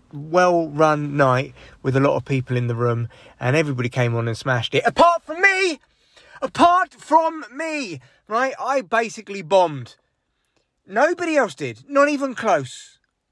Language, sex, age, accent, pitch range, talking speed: English, male, 30-49, British, 125-200 Hz, 150 wpm